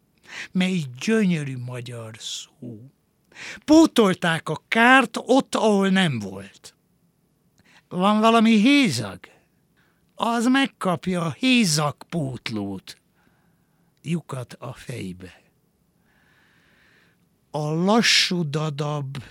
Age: 60-79